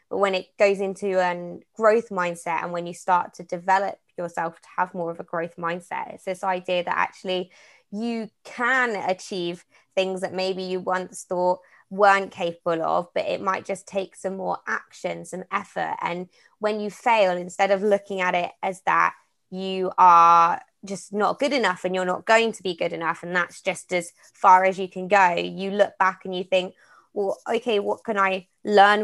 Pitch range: 180-205 Hz